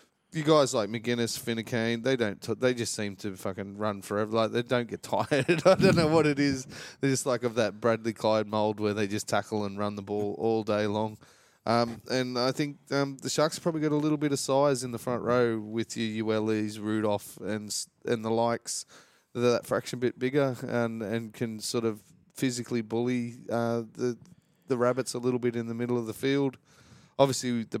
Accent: Australian